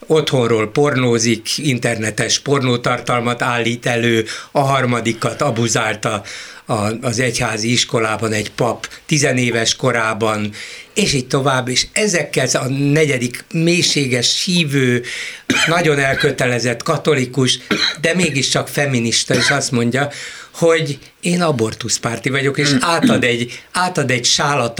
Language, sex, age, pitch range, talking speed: Hungarian, male, 60-79, 120-155 Hz, 105 wpm